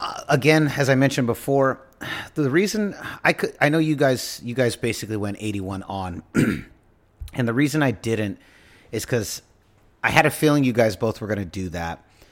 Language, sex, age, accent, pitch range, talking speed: English, male, 30-49, American, 95-125 Hz, 190 wpm